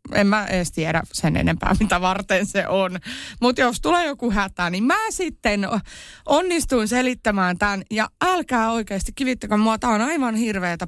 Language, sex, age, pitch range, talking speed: Finnish, female, 30-49, 190-260 Hz, 160 wpm